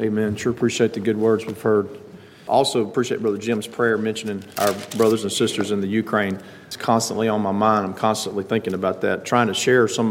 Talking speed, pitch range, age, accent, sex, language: 210 wpm, 100-115 Hz, 40-59, American, male, English